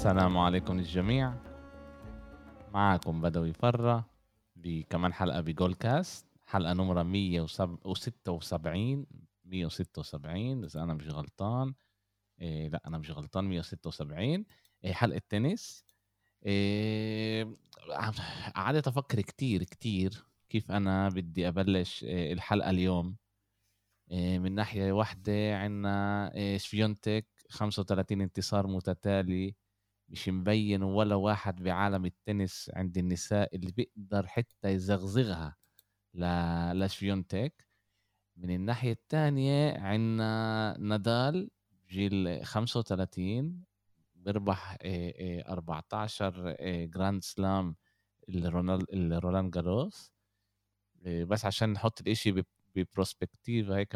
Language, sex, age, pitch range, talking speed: Arabic, male, 20-39, 90-110 Hz, 90 wpm